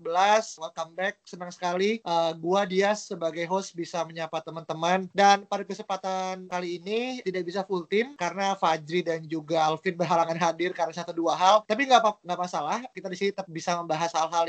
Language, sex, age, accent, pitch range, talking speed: Indonesian, male, 20-39, native, 180-215 Hz, 165 wpm